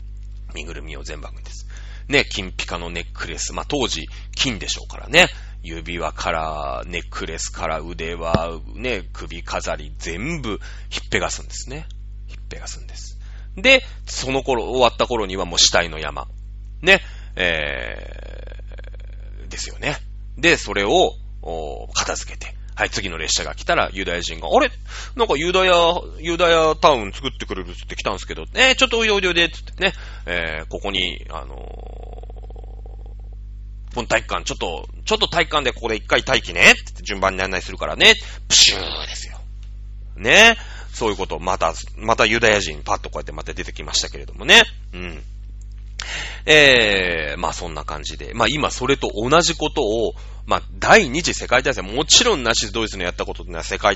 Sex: male